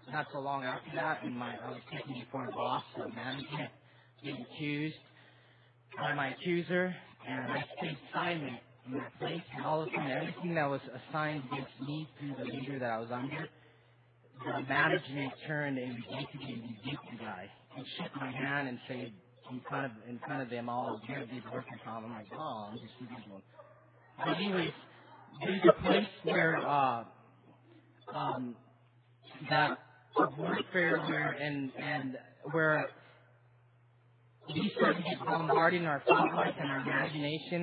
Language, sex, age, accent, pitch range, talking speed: English, male, 30-49, American, 125-160 Hz, 170 wpm